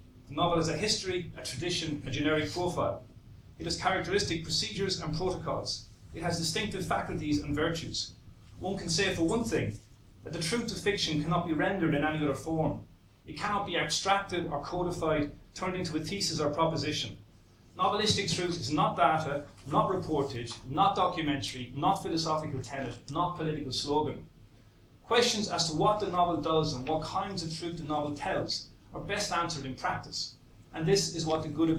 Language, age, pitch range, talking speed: English, 30-49, 135-175 Hz, 175 wpm